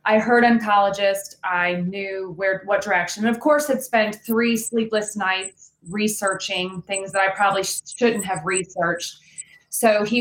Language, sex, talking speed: English, female, 155 wpm